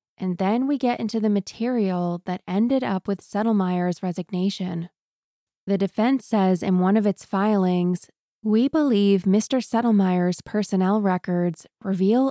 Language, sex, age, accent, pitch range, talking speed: English, female, 20-39, American, 185-210 Hz, 135 wpm